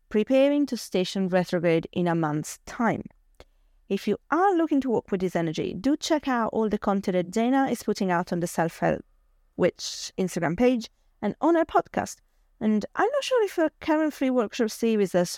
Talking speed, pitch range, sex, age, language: 190 wpm, 180-250 Hz, female, 30-49, English